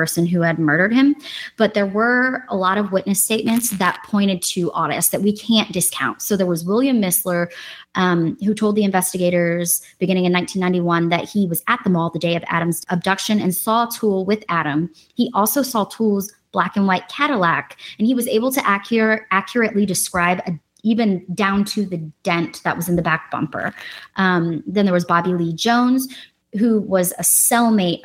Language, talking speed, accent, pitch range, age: English, 195 wpm, American, 170-205 Hz, 20-39